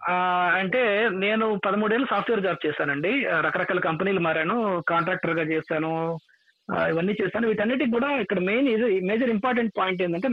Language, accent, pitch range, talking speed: Telugu, native, 180-235 Hz, 130 wpm